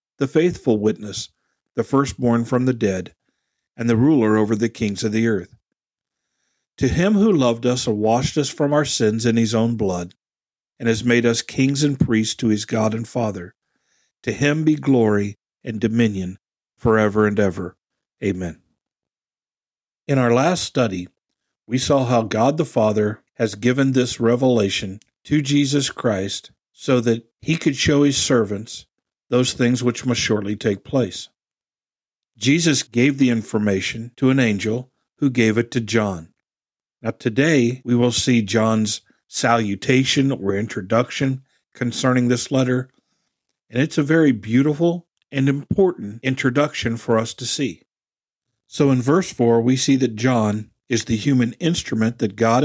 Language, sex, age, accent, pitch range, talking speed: English, male, 50-69, American, 110-135 Hz, 155 wpm